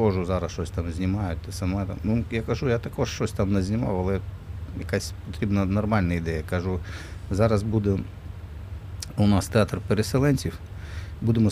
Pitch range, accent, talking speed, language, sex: 90-100 Hz, native, 150 wpm, Ukrainian, male